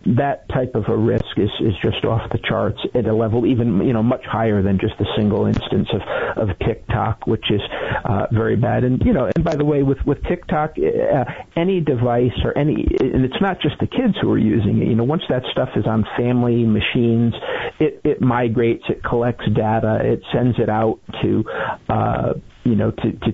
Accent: American